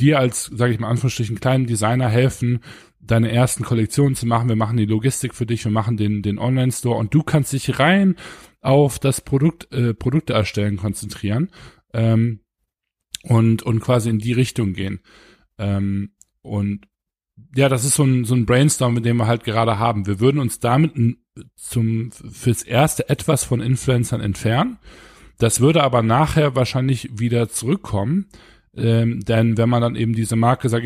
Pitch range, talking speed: 110-130 Hz, 175 wpm